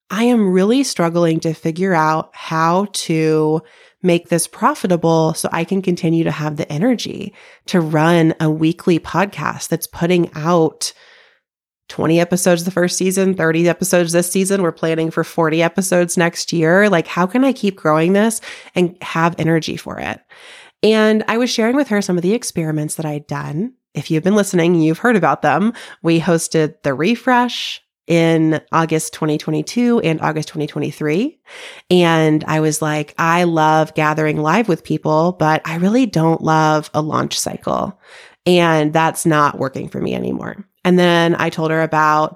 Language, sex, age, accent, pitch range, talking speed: English, female, 30-49, American, 155-195 Hz, 165 wpm